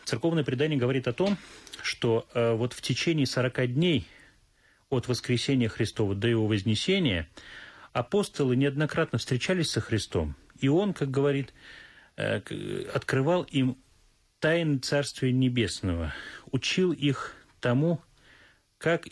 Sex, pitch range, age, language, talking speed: male, 115-145 Hz, 30-49, Russian, 110 wpm